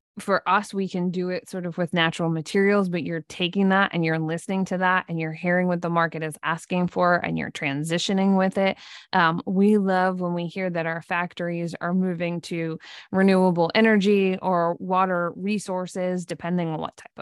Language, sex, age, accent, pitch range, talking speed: English, female, 20-39, American, 170-195 Hz, 190 wpm